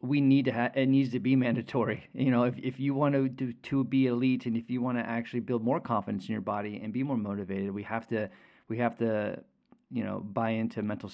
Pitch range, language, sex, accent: 110-135 Hz, English, male, American